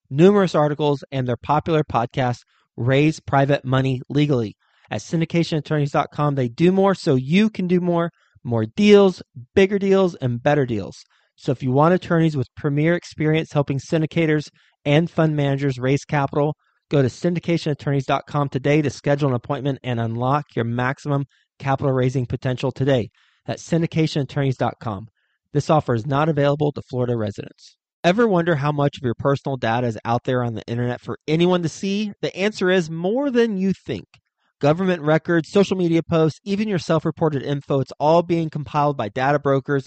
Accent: American